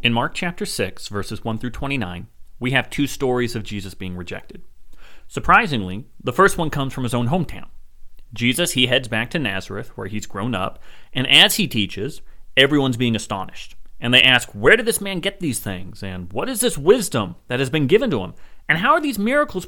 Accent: American